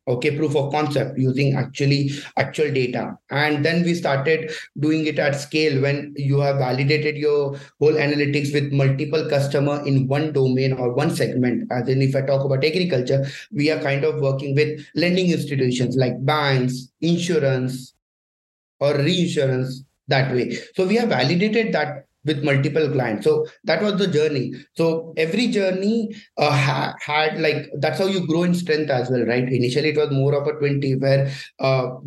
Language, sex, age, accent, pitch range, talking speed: English, male, 30-49, Indian, 135-155 Hz, 170 wpm